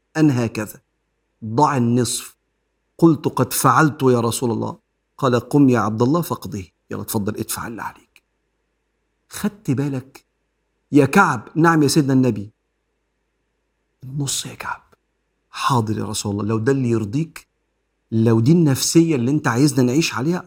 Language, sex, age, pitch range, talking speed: Arabic, male, 50-69, 120-160 Hz, 140 wpm